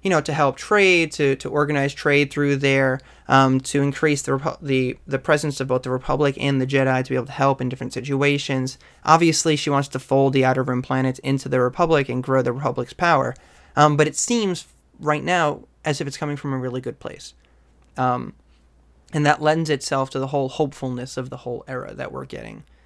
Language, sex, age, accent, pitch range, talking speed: English, male, 20-39, American, 130-150 Hz, 215 wpm